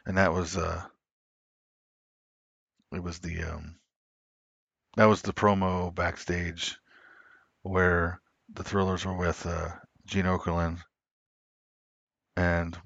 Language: English